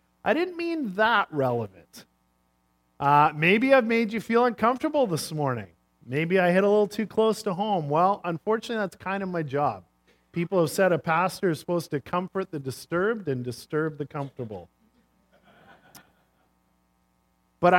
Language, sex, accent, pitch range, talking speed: English, male, American, 110-175 Hz, 155 wpm